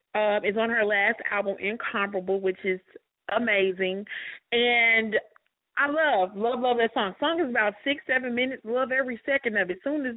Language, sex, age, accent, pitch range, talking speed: English, female, 30-49, American, 210-285 Hz, 185 wpm